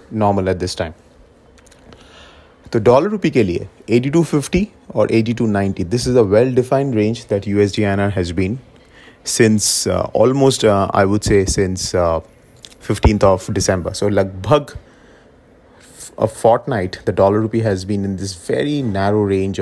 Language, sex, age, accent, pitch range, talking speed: English, male, 30-49, Indian, 95-120 Hz, 155 wpm